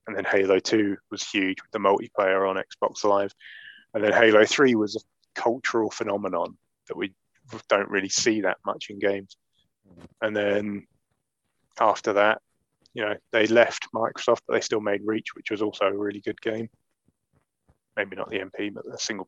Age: 20-39